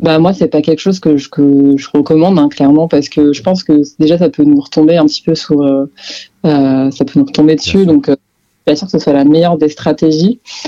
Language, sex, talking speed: French, female, 260 wpm